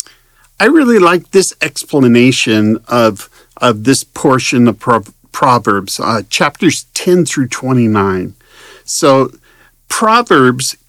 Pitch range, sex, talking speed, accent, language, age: 120-155 Hz, male, 100 wpm, American, English, 50-69